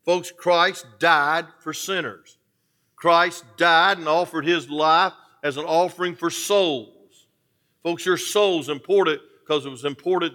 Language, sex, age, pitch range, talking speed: English, male, 50-69, 140-185 Hz, 145 wpm